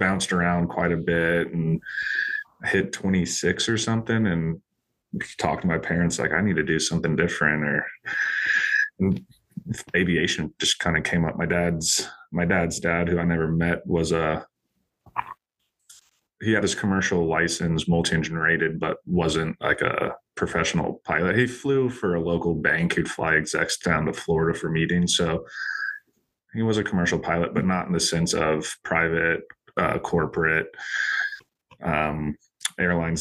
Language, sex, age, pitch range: English, male, 30-49, 80-90 Hz